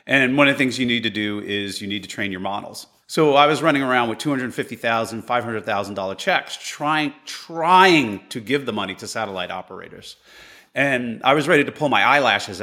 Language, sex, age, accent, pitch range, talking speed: English, male, 30-49, American, 110-155 Hz, 200 wpm